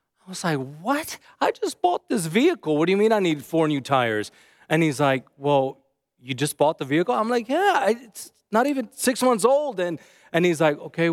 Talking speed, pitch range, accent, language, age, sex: 220 wpm, 140-195 Hz, American, English, 30-49, male